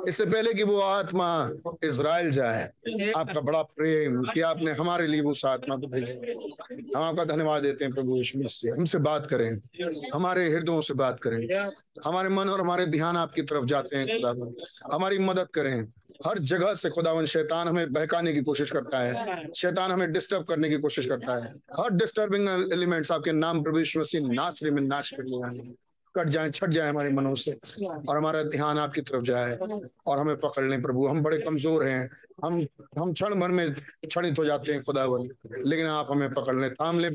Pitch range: 145-190 Hz